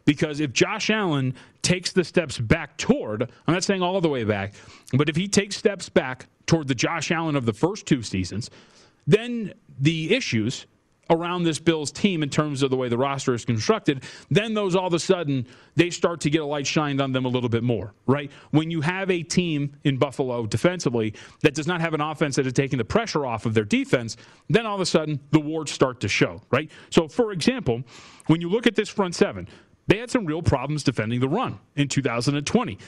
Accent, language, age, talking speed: American, English, 30-49, 220 wpm